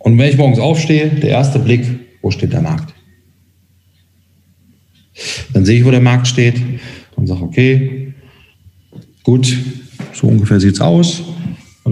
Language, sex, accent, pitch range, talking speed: German, male, German, 110-130 Hz, 145 wpm